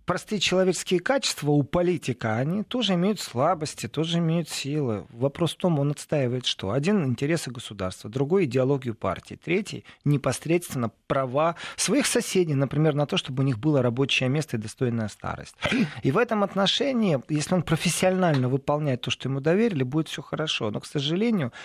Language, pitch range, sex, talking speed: Russian, 135-180 Hz, male, 165 wpm